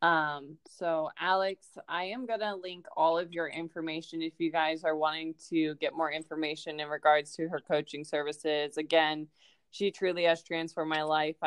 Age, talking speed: 20-39, 180 wpm